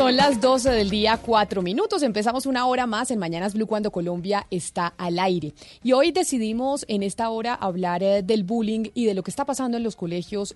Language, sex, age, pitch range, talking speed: Spanish, female, 30-49, 185-235 Hz, 210 wpm